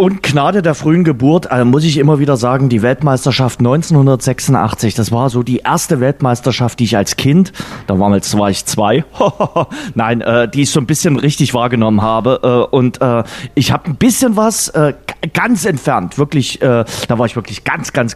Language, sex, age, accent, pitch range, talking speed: German, male, 30-49, German, 115-160 Hz, 175 wpm